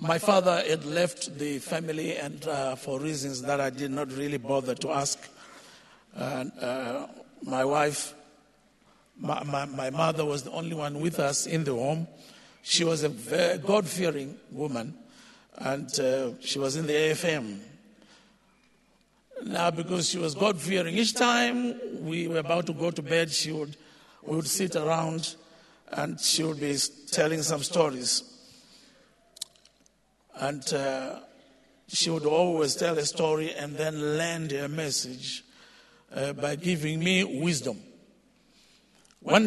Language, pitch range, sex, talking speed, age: English, 145-190 Hz, male, 140 wpm, 50-69